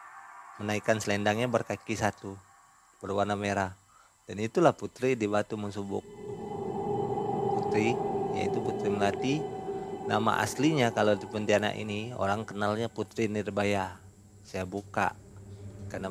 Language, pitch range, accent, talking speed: Indonesian, 100-110 Hz, native, 110 wpm